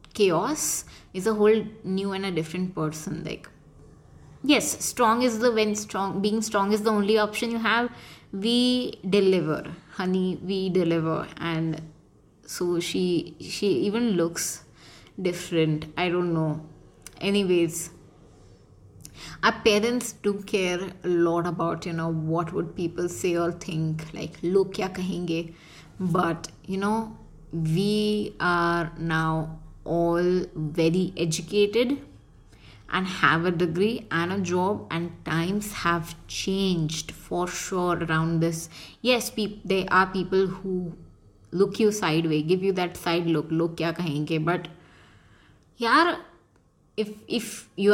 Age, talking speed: 20-39, 130 wpm